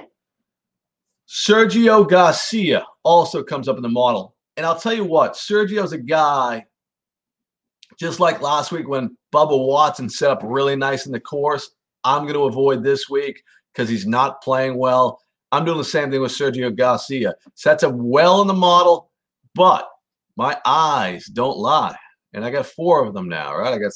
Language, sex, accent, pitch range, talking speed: English, male, American, 135-195 Hz, 175 wpm